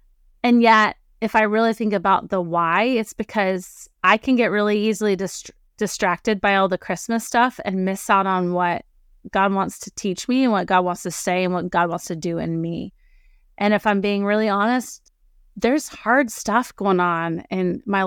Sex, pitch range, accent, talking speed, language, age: female, 190-225 Hz, American, 195 wpm, English, 30-49